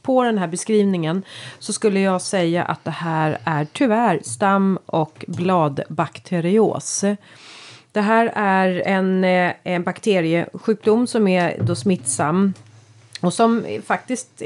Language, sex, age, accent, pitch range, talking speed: Swedish, female, 30-49, native, 170-205 Hz, 120 wpm